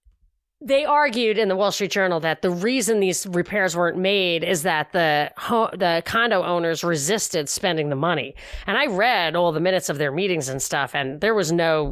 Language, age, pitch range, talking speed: English, 30-49, 170-230 Hz, 200 wpm